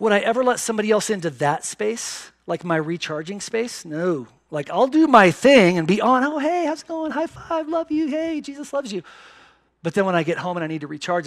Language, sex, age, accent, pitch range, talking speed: English, male, 40-59, American, 155-210 Hz, 245 wpm